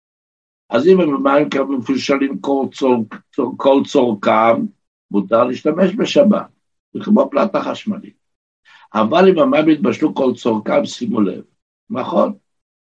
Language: Hebrew